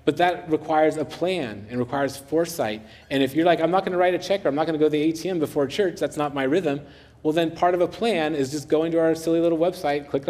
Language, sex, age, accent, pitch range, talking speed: English, male, 30-49, American, 120-155 Hz, 285 wpm